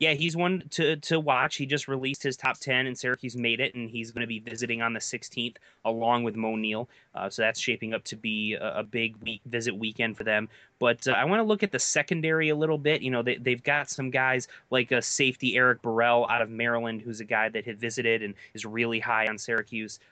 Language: English